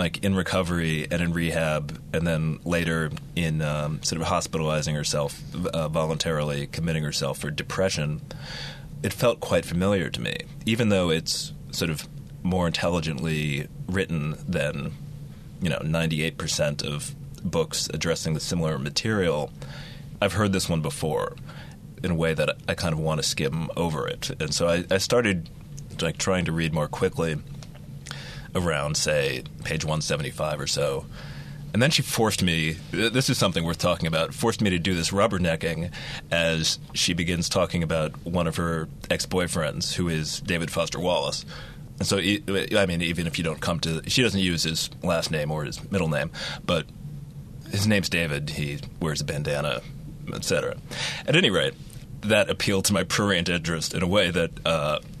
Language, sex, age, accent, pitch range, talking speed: English, male, 30-49, American, 80-95 Hz, 165 wpm